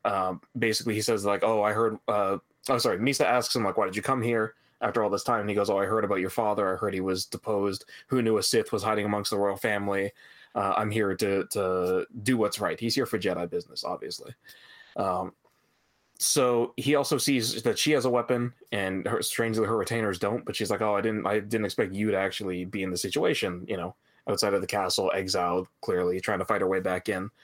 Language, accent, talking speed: English, American, 235 wpm